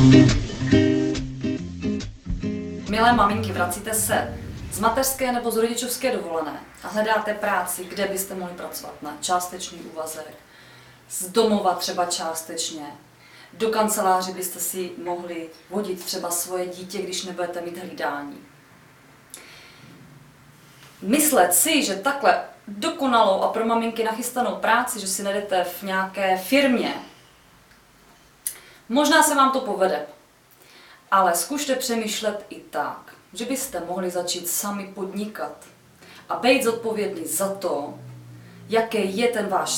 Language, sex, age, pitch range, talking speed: Czech, female, 30-49, 160-225 Hz, 120 wpm